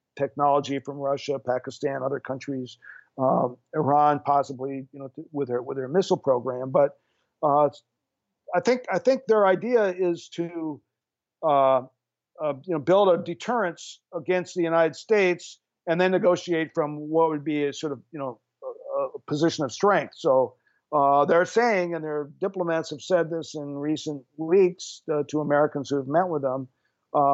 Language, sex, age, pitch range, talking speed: English, male, 50-69, 145-175 Hz, 170 wpm